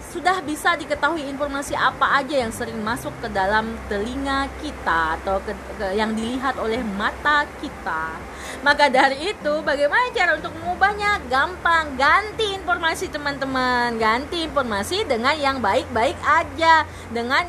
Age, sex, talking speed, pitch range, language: 20-39, female, 135 wpm, 260-370 Hz, Indonesian